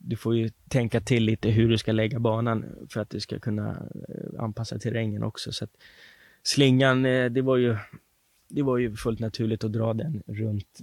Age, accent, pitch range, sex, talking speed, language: 20-39, native, 105-120 Hz, male, 195 wpm, Swedish